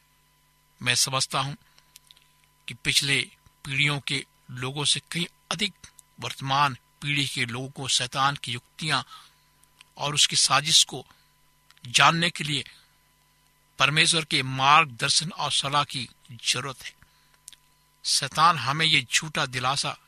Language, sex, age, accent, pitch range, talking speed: Hindi, male, 60-79, native, 135-155 Hz, 115 wpm